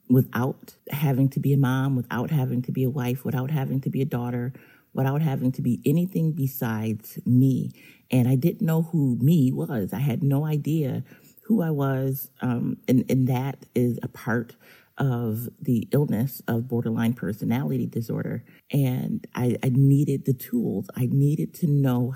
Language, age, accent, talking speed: English, 40-59, American, 170 wpm